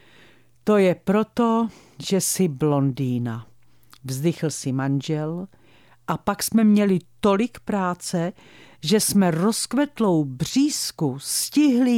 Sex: female